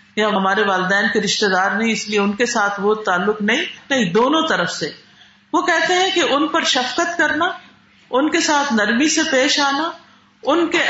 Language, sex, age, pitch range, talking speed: Urdu, female, 50-69, 210-310 Hz, 195 wpm